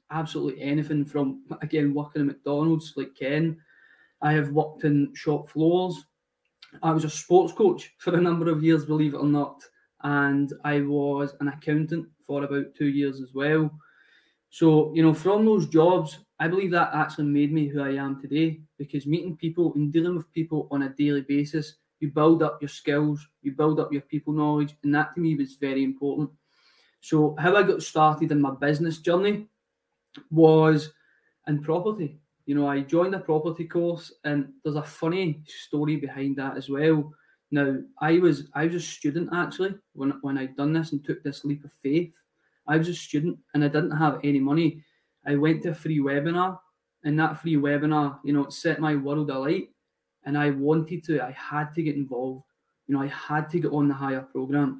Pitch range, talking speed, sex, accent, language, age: 145-160 Hz, 195 wpm, male, British, English, 20-39